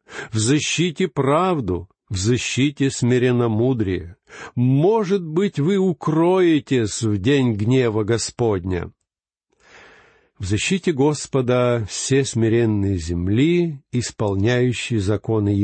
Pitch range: 115-160 Hz